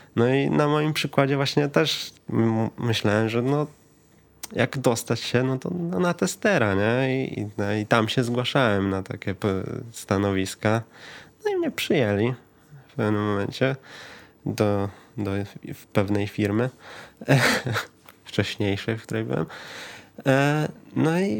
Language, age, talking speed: Polish, 20-39, 145 wpm